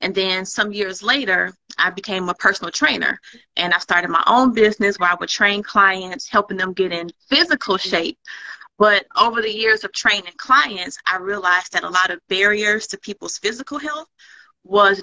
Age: 30-49